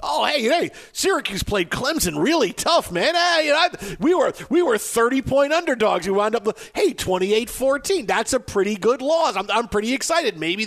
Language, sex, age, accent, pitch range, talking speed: English, male, 40-59, American, 150-205 Hz, 210 wpm